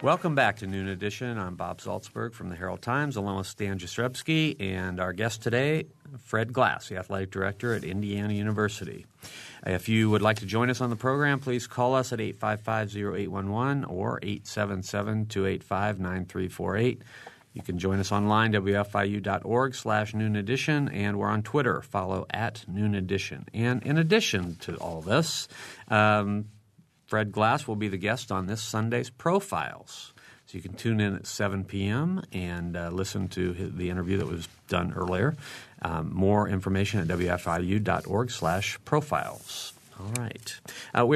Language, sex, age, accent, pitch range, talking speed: English, male, 40-59, American, 95-115 Hz, 155 wpm